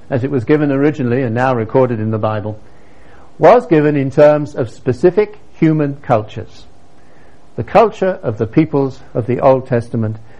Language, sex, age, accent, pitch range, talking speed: Danish, male, 60-79, British, 115-170 Hz, 160 wpm